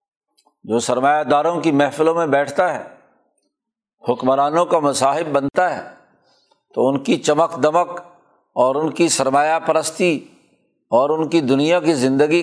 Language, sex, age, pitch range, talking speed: Urdu, male, 60-79, 140-180 Hz, 140 wpm